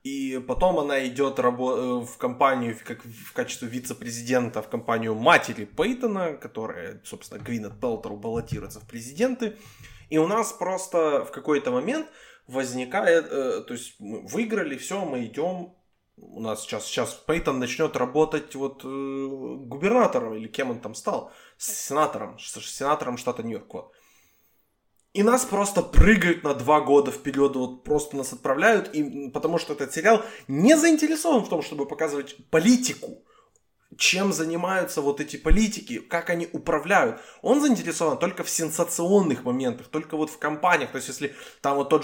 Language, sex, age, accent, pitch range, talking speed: Ukrainian, male, 20-39, native, 130-180 Hz, 150 wpm